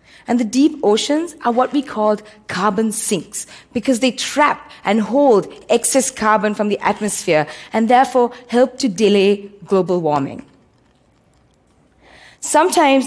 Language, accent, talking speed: Russian, Indian, 130 wpm